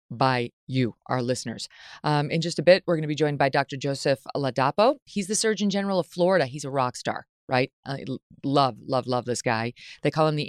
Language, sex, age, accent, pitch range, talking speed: English, female, 30-49, American, 130-165 Hz, 225 wpm